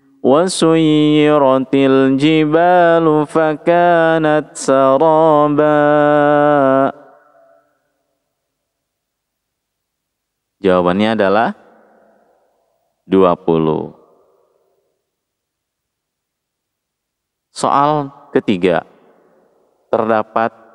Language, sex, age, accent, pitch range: Indonesian, male, 30-49, native, 125-150 Hz